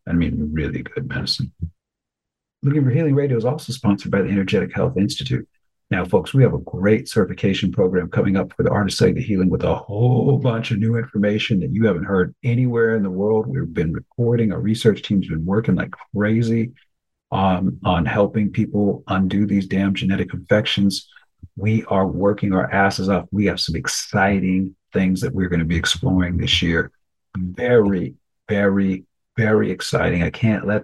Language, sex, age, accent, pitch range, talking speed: English, male, 50-69, American, 95-110 Hz, 185 wpm